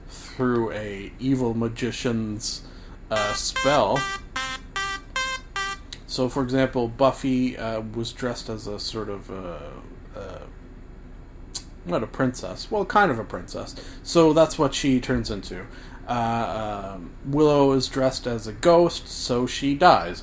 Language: English